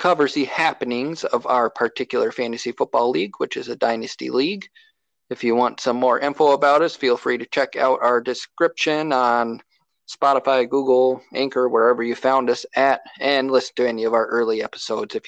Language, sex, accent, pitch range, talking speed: English, male, American, 120-150 Hz, 185 wpm